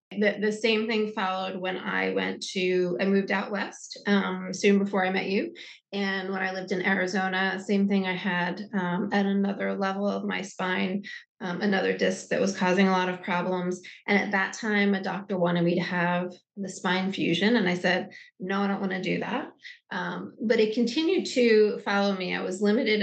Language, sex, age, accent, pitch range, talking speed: English, female, 20-39, American, 185-215 Hz, 205 wpm